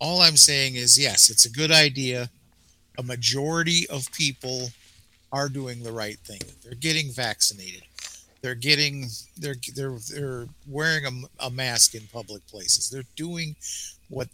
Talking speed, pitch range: 150 wpm, 85-140 Hz